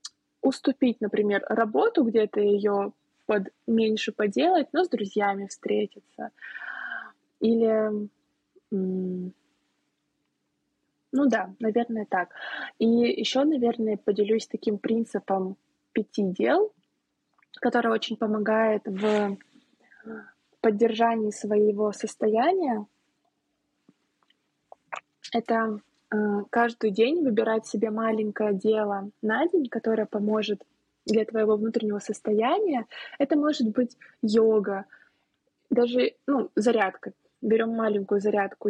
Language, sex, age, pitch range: Russian, female, 20-39, 210-245 Hz